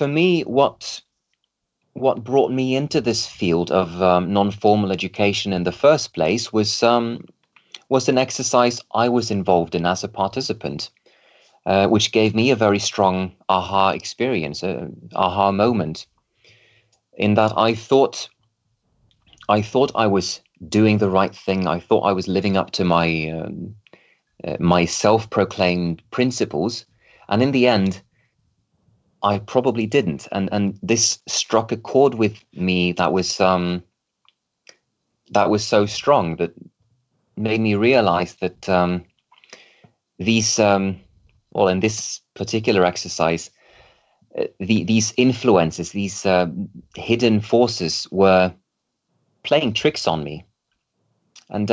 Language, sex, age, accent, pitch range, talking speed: English, male, 30-49, British, 95-115 Hz, 130 wpm